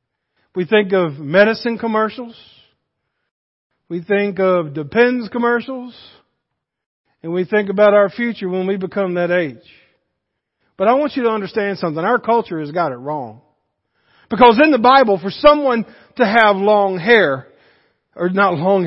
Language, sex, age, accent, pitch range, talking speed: English, male, 50-69, American, 200-270 Hz, 150 wpm